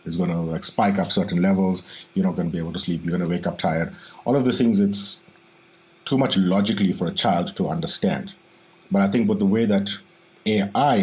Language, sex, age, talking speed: English, male, 50-69, 220 wpm